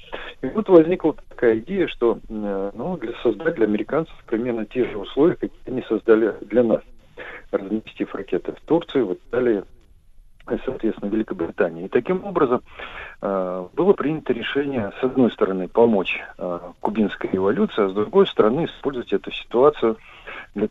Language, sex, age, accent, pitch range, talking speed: Russian, male, 40-59, native, 105-145 Hz, 140 wpm